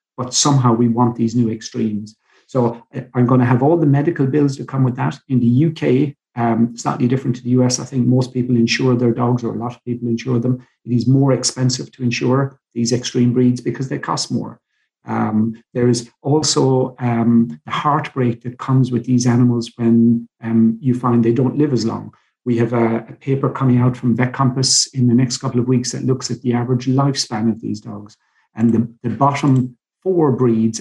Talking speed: 210 wpm